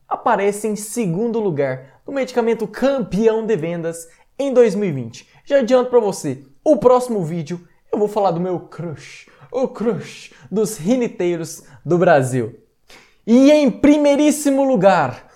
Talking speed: 135 wpm